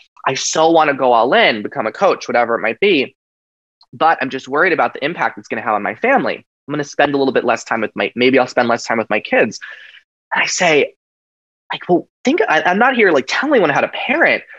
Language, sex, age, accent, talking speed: English, male, 20-39, American, 255 wpm